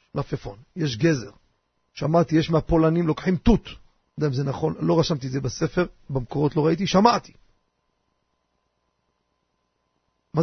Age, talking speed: 40-59, 140 wpm